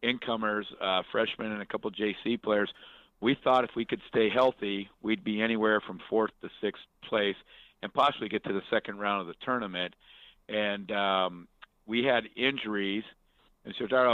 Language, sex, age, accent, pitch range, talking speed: English, male, 50-69, American, 105-115 Hz, 185 wpm